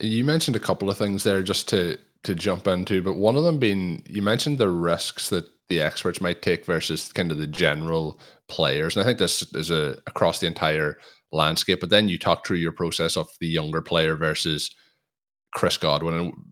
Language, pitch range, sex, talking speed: English, 80-105 Hz, male, 205 wpm